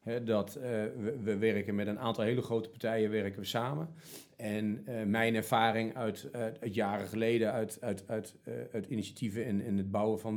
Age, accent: 40-59, Dutch